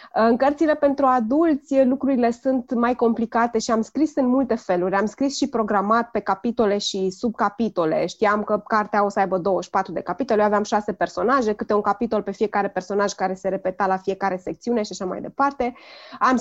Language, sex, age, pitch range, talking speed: Romanian, female, 20-39, 205-260 Hz, 190 wpm